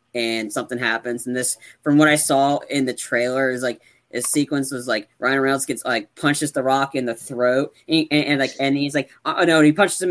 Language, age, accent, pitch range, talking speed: English, 20-39, American, 125-150 Hz, 235 wpm